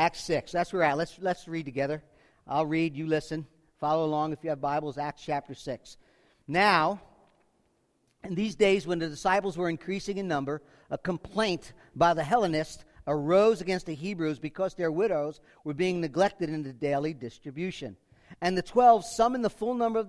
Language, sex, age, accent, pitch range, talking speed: English, male, 50-69, American, 155-200 Hz, 180 wpm